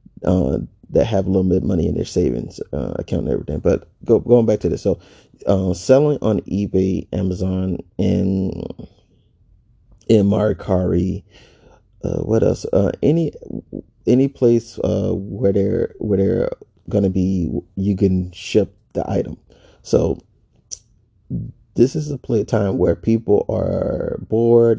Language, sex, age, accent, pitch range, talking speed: English, male, 30-49, American, 95-110 Hz, 145 wpm